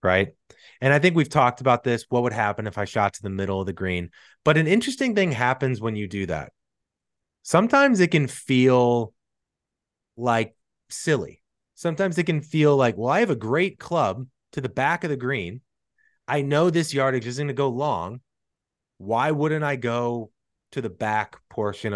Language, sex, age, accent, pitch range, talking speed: English, male, 30-49, American, 110-155 Hz, 190 wpm